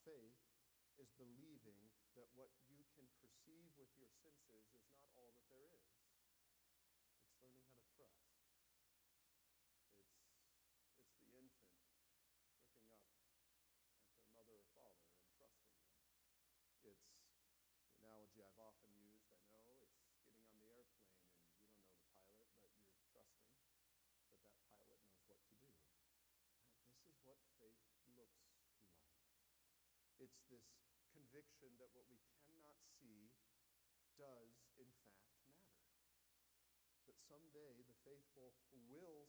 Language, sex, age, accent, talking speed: English, male, 40-59, American, 135 wpm